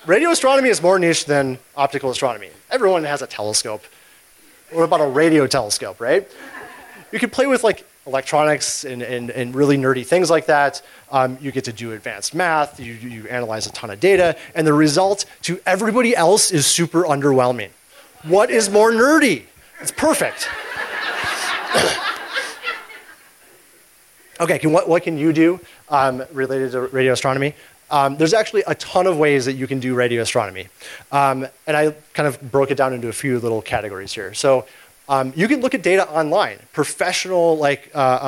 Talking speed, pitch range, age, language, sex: 175 wpm, 130-170 Hz, 30-49, English, male